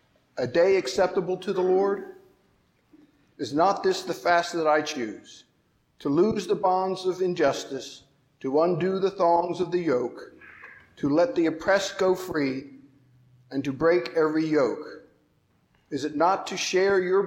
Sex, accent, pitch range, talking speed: male, American, 150-190 Hz, 155 wpm